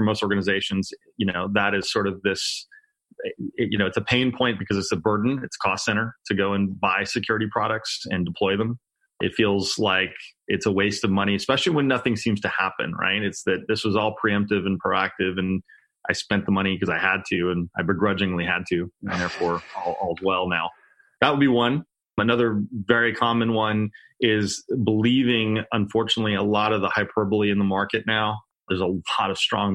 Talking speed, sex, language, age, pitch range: 200 wpm, male, English, 30-49, 100-115 Hz